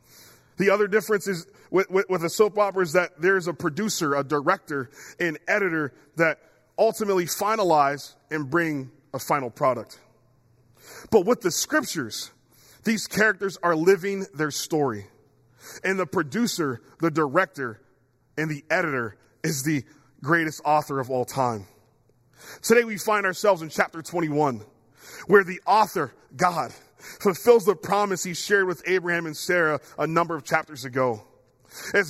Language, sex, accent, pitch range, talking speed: English, male, American, 135-185 Hz, 145 wpm